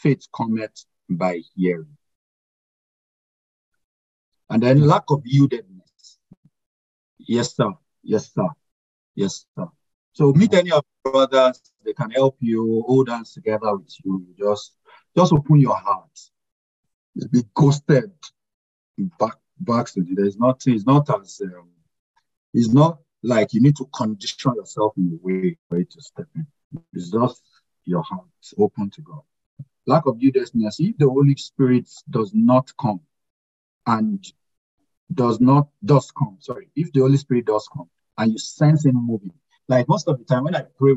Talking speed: 155 wpm